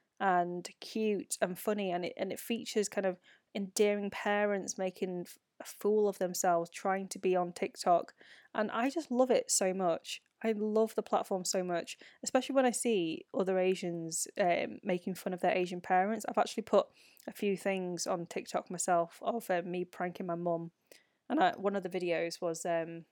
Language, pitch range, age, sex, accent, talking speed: English, 180-225 Hz, 20-39, female, British, 180 wpm